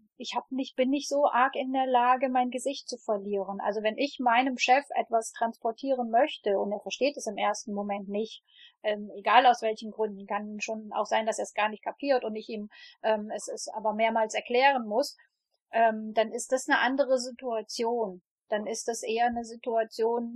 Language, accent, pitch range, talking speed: German, German, 215-260 Hz, 200 wpm